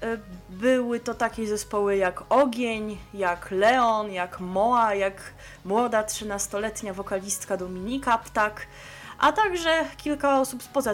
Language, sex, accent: Polish, female, native